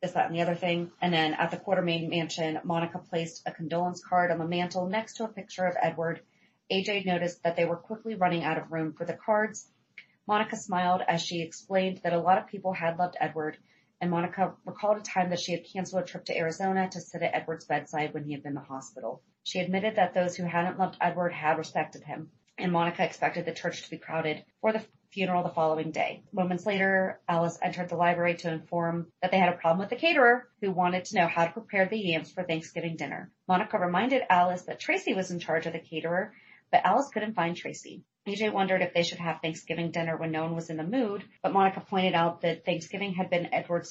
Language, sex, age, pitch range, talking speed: English, female, 30-49, 165-190 Hz, 235 wpm